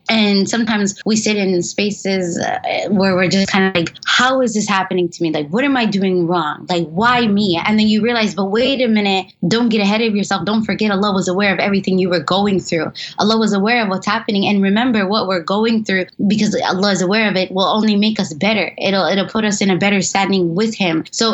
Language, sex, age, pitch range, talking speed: English, female, 20-39, 180-215 Hz, 240 wpm